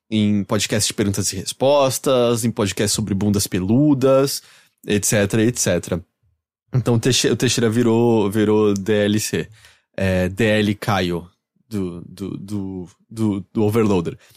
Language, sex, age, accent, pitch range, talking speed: English, male, 20-39, Brazilian, 105-130 Hz, 115 wpm